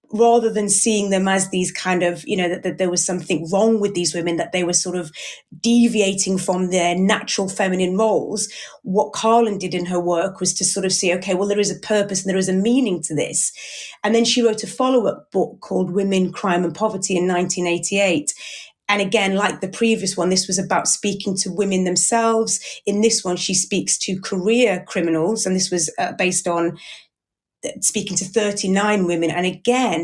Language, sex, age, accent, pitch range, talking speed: English, female, 30-49, British, 185-215 Hz, 200 wpm